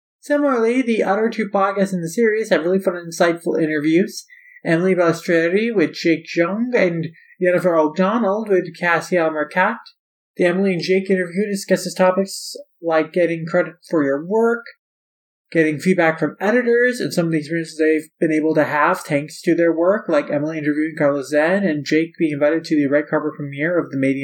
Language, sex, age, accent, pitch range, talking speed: English, male, 20-39, American, 155-195 Hz, 180 wpm